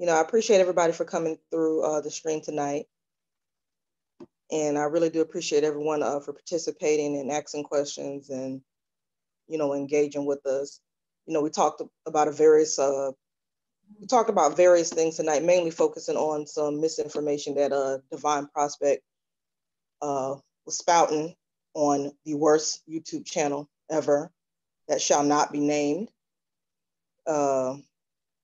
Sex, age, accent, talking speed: female, 20-39, American, 145 wpm